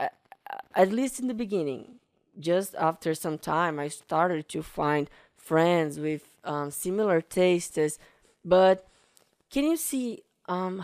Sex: female